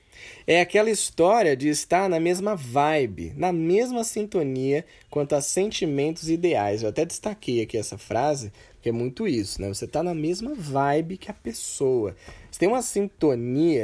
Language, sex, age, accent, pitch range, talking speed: Portuguese, male, 20-39, Brazilian, 130-180 Hz, 165 wpm